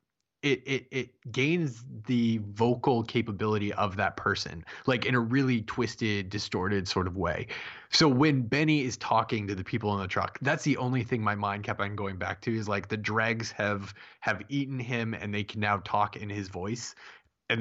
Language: English